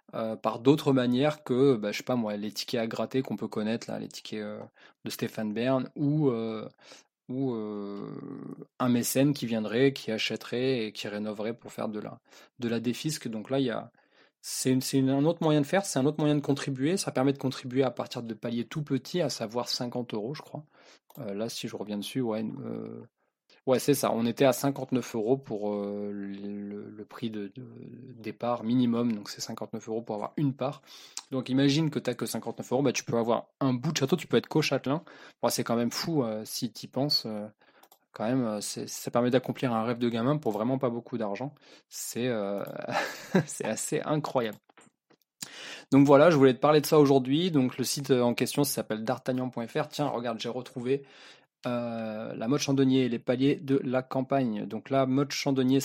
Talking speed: 215 wpm